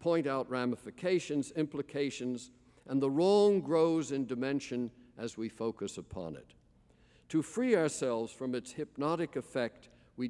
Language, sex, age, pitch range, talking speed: English, male, 50-69, 115-155 Hz, 135 wpm